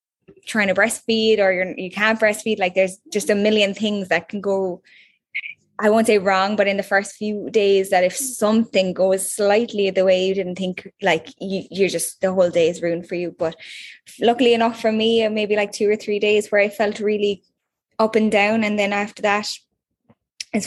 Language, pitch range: English, 190-215 Hz